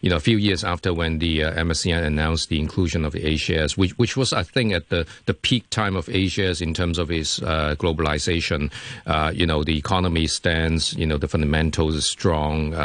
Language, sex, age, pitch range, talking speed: English, male, 50-69, 80-105 Hz, 210 wpm